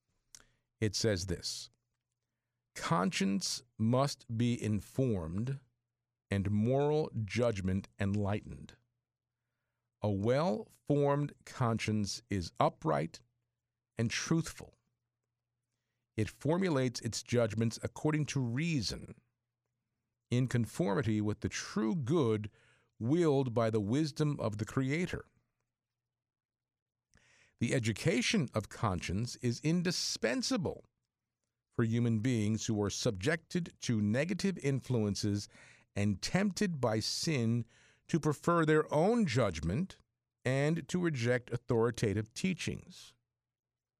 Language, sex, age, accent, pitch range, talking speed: English, male, 50-69, American, 110-135 Hz, 90 wpm